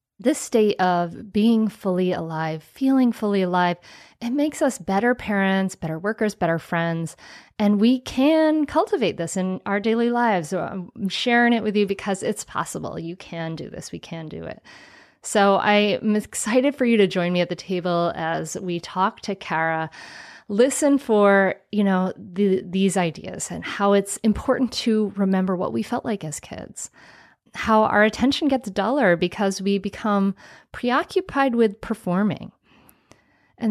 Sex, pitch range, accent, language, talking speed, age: female, 180-240 Hz, American, English, 160 wpm, 30-49